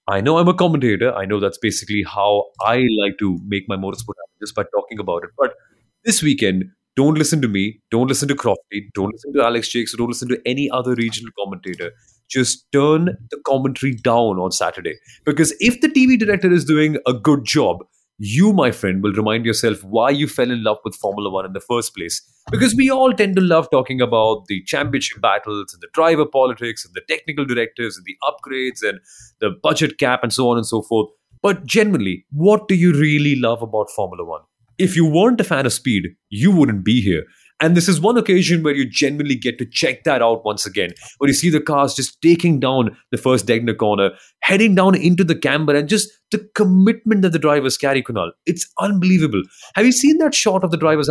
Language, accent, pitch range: English, Indian, 115-175 Hz